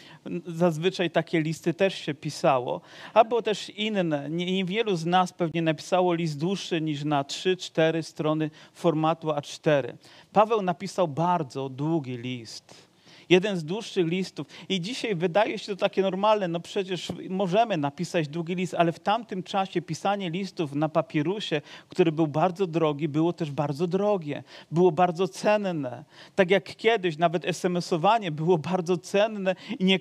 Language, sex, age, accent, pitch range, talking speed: Polish, male, 40-59, native, 165-195 Hz, 150 wpm